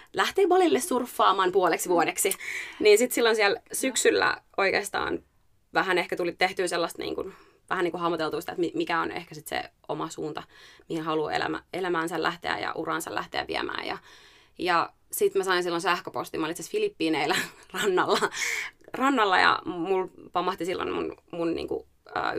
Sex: female